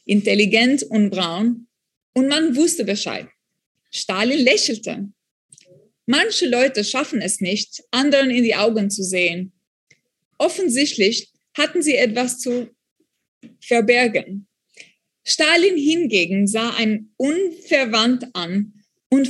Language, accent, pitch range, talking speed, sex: German, German, 205-280 Hz, 105 wpm, female